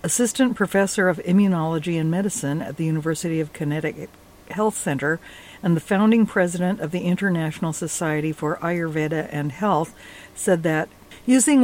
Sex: female